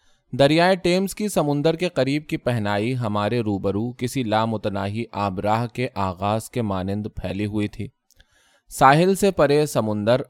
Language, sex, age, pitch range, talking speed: Urdu, male, 20-39, 105-140 Hz, 145 wpm